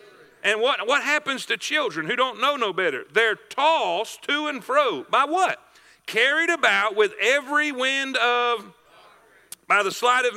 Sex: male